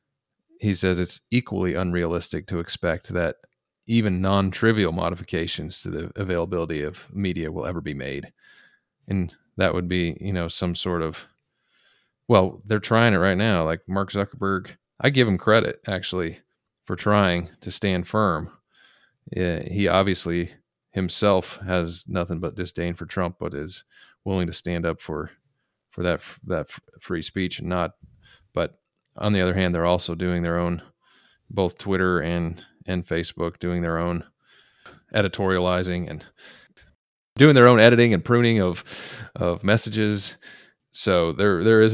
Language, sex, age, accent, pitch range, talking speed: English, male, 30-49, American, 85-100 Hz, 150 wpm